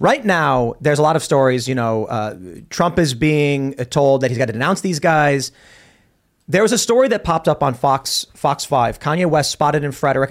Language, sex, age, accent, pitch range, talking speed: English, male, 30-49, American, 125-165 Hz, 215 wpm